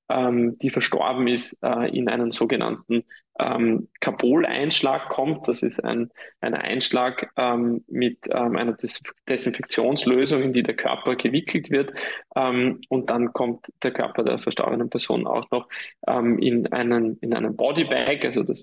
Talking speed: 140 wpm